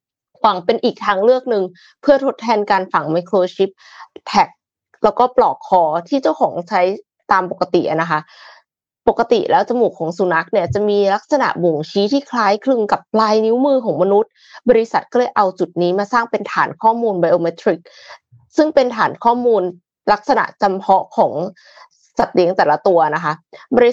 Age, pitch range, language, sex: 20-39, 185-245 Hz, Thai, female